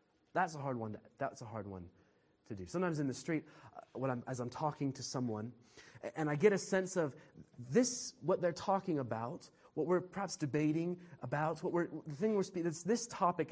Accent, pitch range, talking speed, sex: American, 140-190 Hz, 210 wpm, male